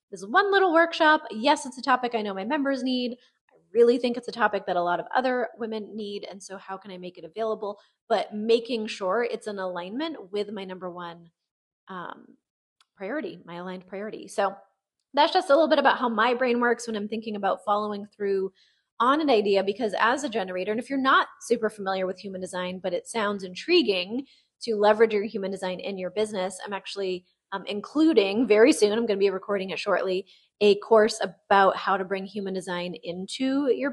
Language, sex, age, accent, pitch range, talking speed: English, female, 20-39, American, 185-245 Hz, 210 wpm